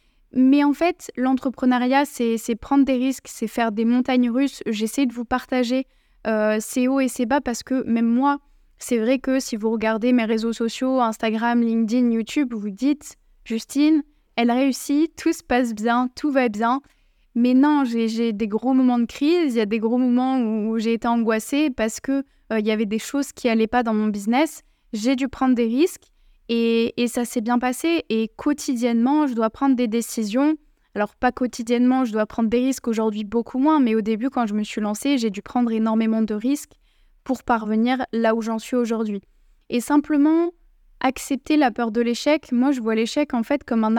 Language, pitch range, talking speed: French, 230-275 Hz, 210 wpm